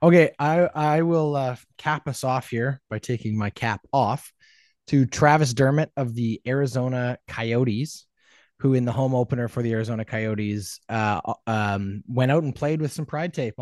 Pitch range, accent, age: 110-135 Hz, American, 20-39